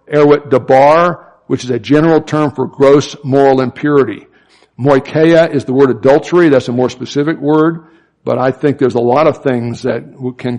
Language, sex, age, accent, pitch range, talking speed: English, male, 60-79, American, 125-145 Hz, 175 wpm